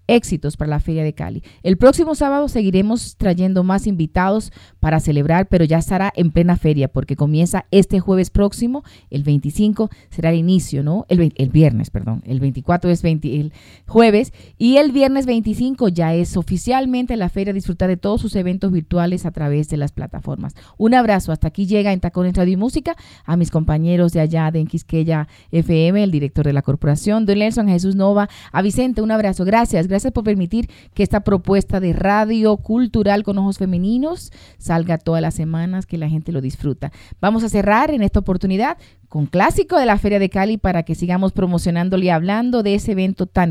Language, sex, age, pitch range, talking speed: Spanish, female, 30-49, 165-215 Hz, 195 wpm